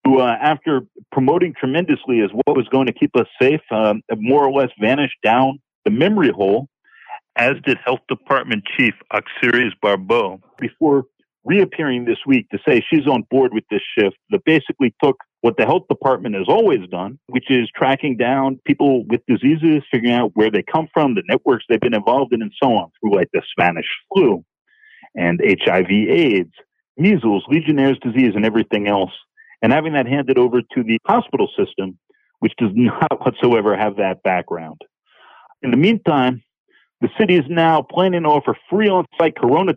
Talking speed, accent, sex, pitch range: 175 wpm, American, male, 125-180 Hz